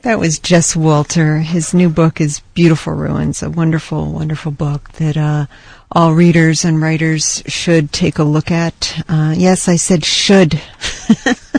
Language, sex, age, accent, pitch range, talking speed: English, female, 50-69, American, 150-175 Hz, 155 wpm